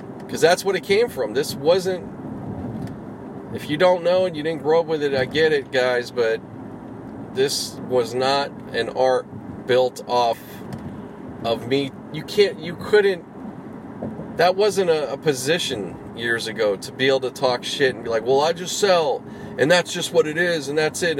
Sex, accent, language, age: male, American, English, 40-59